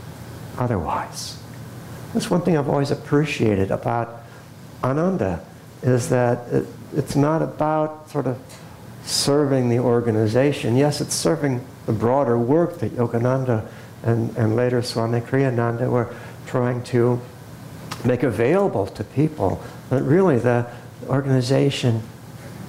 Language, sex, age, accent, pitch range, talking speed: English, male, 60-79, American, 120-145 Hz, 115 wpm